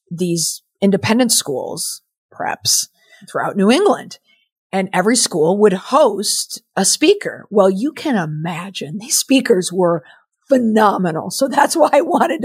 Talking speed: 130 wpm